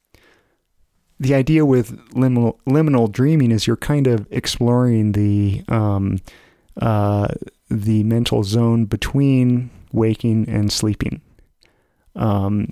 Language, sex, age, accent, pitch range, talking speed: English, male, 30-49, American, 105-120 Hz, 105 wpm